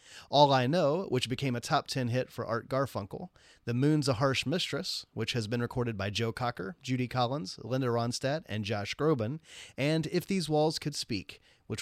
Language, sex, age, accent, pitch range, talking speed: English, male, 30-49, American, 125-160 Hz, 190 wpm